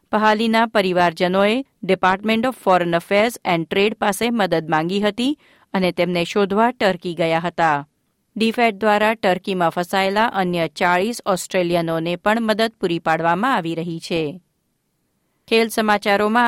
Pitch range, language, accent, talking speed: 180-225 Hz, Gujarati, native, 125 wpm